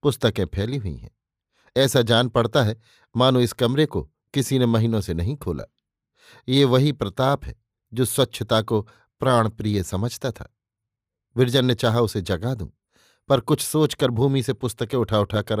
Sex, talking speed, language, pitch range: male, 160 wpm, Hindi, 110-140 Hz